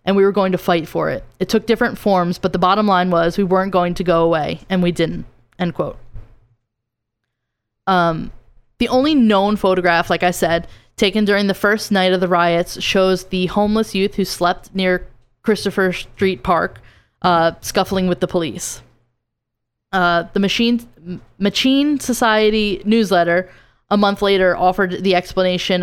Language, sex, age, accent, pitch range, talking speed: English, female, 10-29, American, 170-200 Hz, 165 wpm